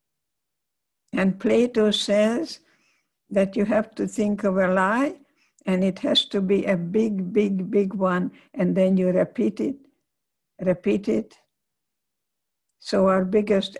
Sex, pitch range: female, 185-210 Hz